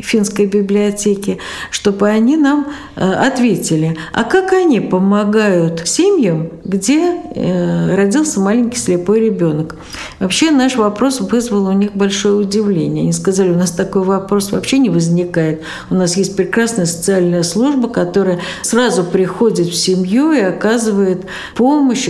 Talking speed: 135 wpm